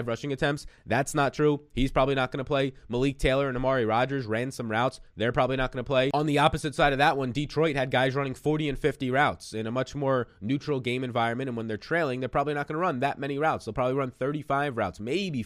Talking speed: 255 wpm